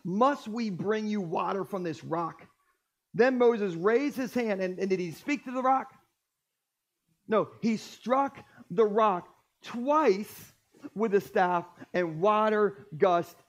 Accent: American